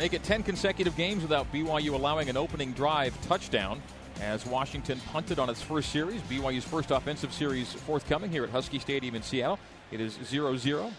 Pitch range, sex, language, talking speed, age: 130-165 Hz, male, English, 180 wpm, 40-59